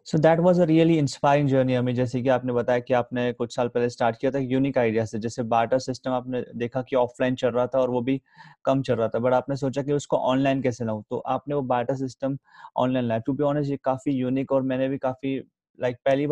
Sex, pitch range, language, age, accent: male, 120-135 Hz, Hindi, 20-39, native